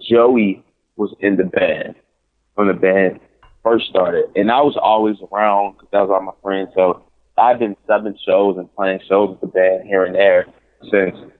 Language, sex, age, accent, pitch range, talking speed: English, male, 20-39, American, 95-105 Hz, 190 wpm